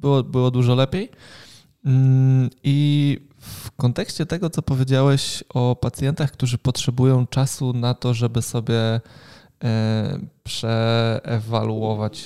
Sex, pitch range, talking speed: male, 120-140 Hz, 100 wpm